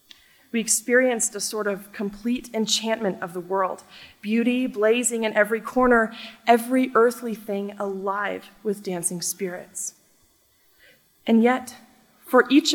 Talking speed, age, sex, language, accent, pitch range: 120 wpm, 20-39, female, English, American, 195-235 Hz